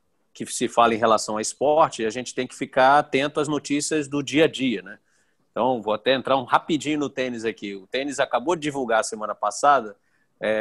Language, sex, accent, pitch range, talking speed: Portuguese, male, Brazilian, 115-145 Hz, 210 wpm